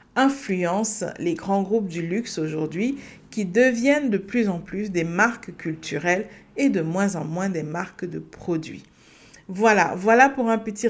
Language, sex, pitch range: French, female, 175-235 Hz